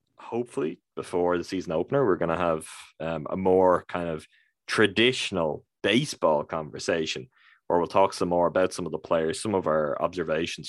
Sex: male